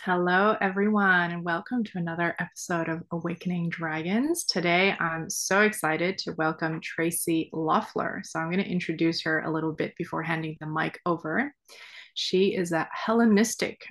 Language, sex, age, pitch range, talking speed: English, female, 20-39, 165-200 Hz, 155 wpm